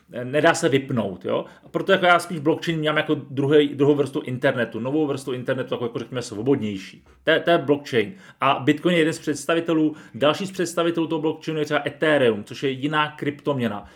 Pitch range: 140-165 Hz